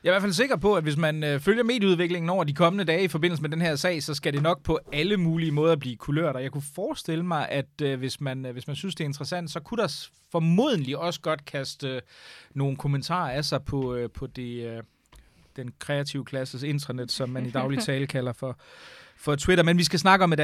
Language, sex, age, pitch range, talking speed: Danish, male, 30-49, 135-175 Hz, 250 wpm